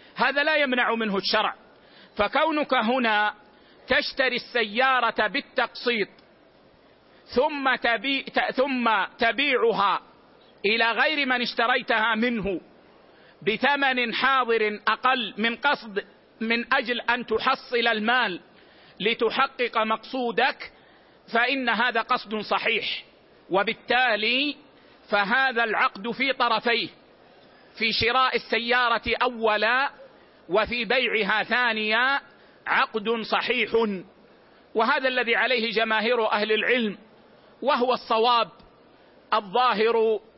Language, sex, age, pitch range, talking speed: Arabic, male, 50-69, 220-255 Hz, 85 wpm